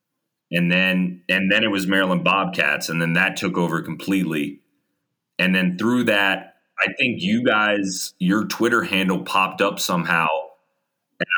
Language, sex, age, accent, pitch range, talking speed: English, male, 30-49, American, 85-100 Hz, 155 wpm